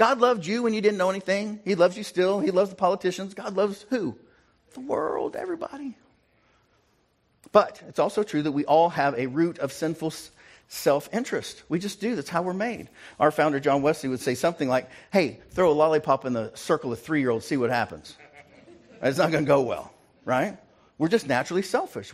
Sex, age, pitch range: male, 50-69, 115-175 Hz